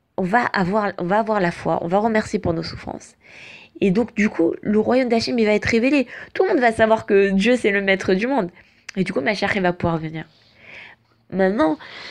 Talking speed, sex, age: 225 wpm, female, 20-39